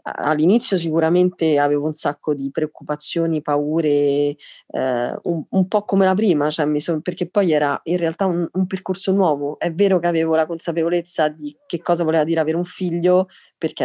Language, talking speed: Italian, 170 wpm